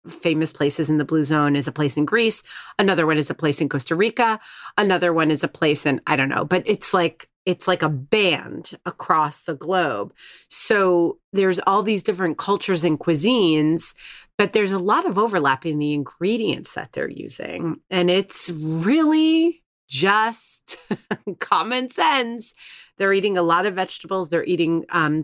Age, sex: 30-49, female